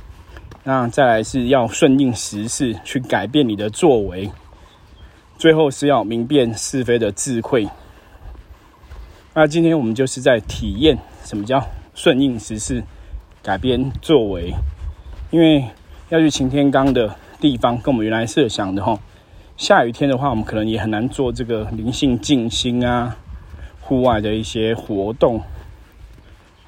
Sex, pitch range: male, 95-130 Hz